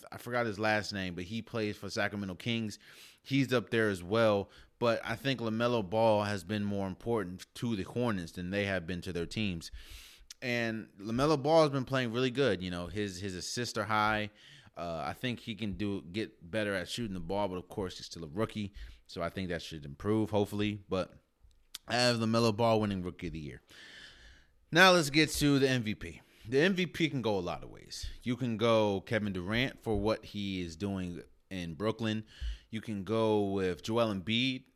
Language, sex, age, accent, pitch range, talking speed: English, male, 30-49, American, 90-115 Hz, 205 wpm